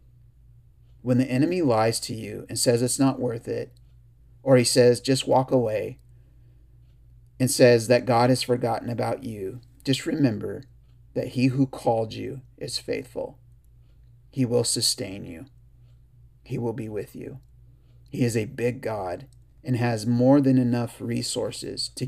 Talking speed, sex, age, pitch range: 150 wpm, male, 30-49, 120-125 Hz